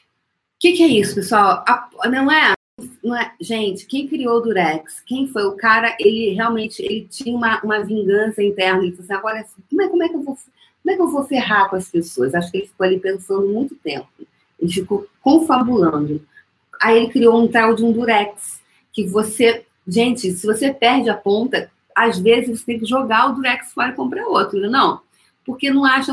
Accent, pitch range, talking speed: Brazilian, 185-250 Hz, 195 wpm